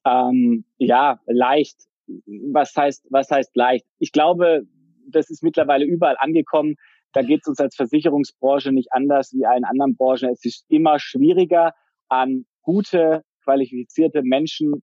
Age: 20-39